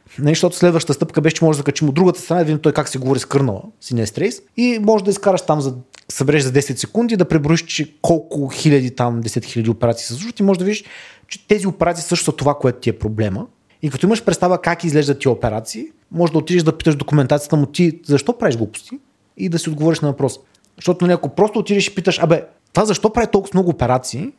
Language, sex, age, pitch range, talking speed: Bulgarian, male, 30-49, 120-165 Hz, 230 wpm